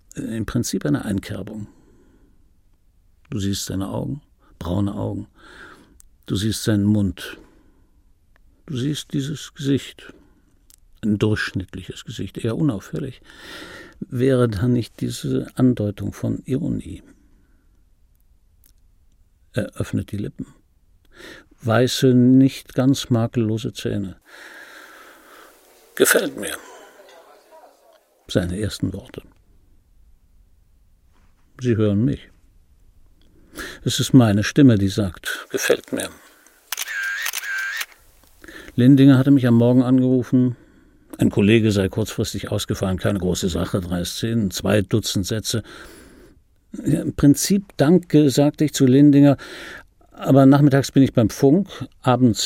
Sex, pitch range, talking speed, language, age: male, 95-130 Hz, 100 wpm, German, 60-79